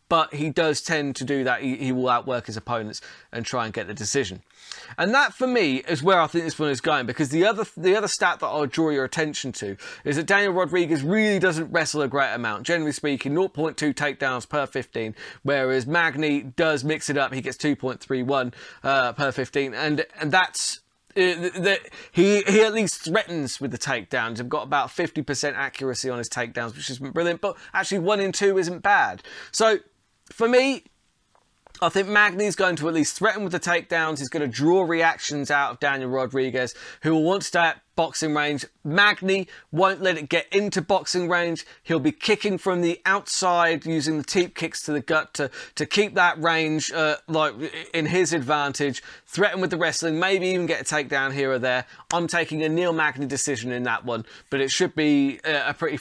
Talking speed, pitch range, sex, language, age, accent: 205 wpm, 135-175 Hz, male, English, 20-39, British